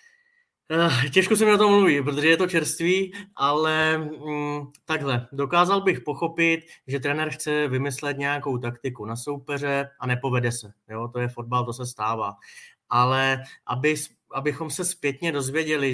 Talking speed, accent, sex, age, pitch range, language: 145 wpm, native, male, 20-39, 130-160 Hz, Czech